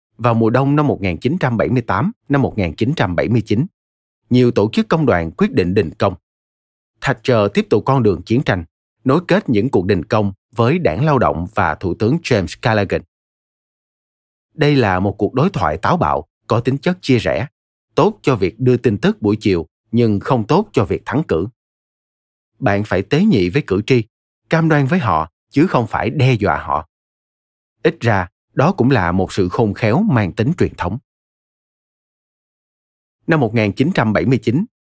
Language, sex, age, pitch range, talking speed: Vietnamese, male, 30-49, 90-130 Hz, 170 wpm